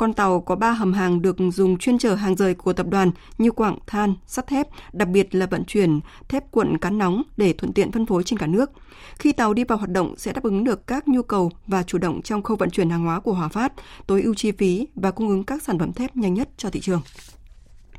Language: Vietnamese